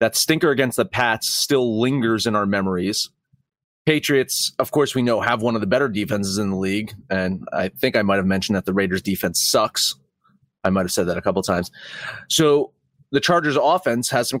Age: 30-49